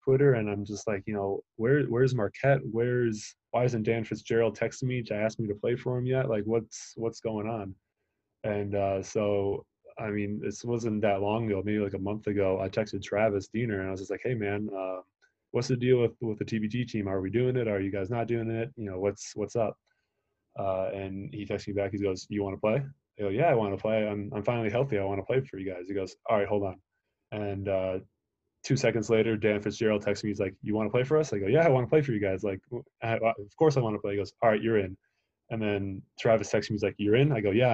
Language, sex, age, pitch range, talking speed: English, male, 20-39, 100-115 Hz, 265 wpm